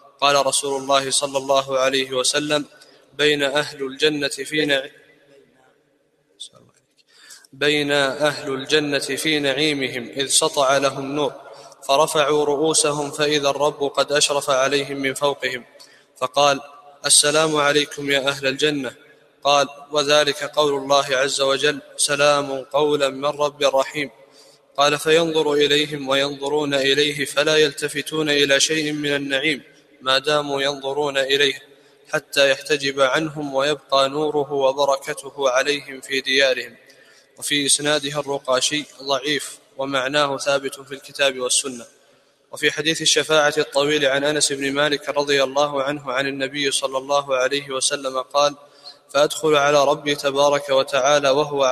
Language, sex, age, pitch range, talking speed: Arabic, male, 20-39, 135-150 Hz, 120 wpm